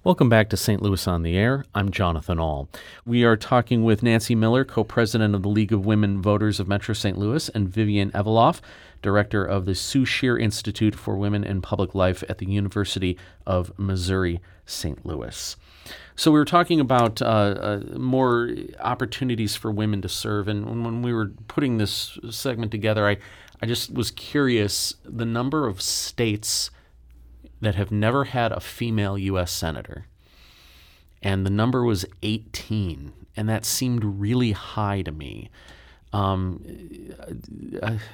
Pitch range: 95-115 Hz